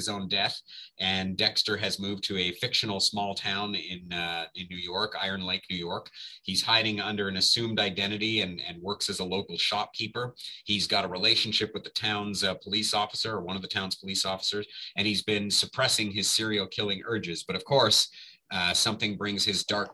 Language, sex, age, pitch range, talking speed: English, male, 30-49, 95-110 Hz, 195 wpm